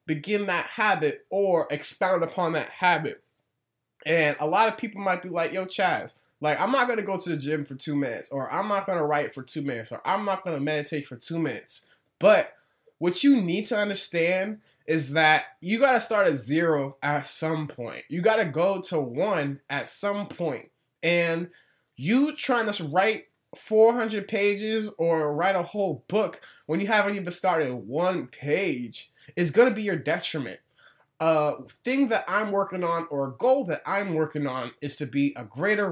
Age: 20-39